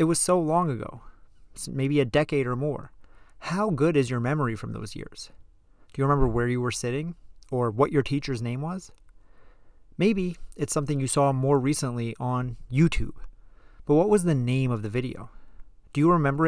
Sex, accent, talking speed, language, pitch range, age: male, American, 185 wpm, English, 125-155 Hz, 30-49